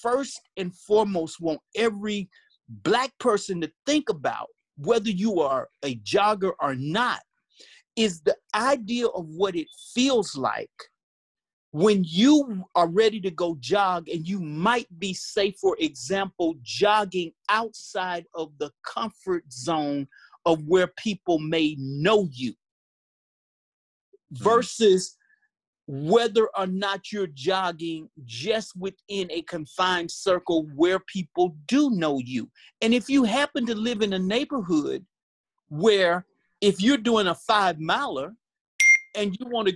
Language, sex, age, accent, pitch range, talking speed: English, male, 40-59, American, 170-230 Hz, 130 wpm